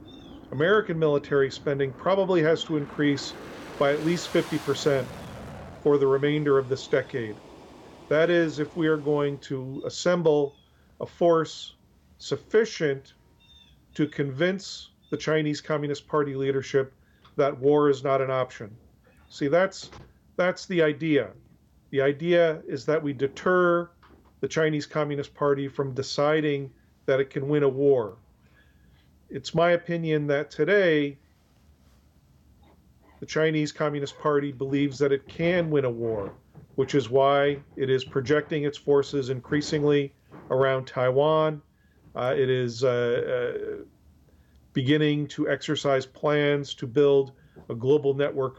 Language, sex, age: English, male, 40-59